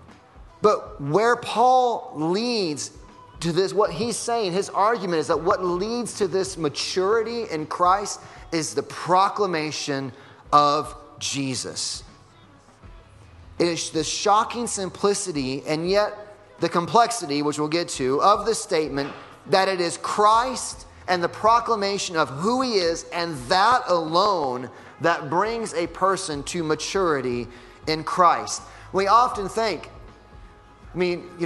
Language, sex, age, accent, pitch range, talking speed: English, male, 30-49, American, 150-200 Hz, 130 wpm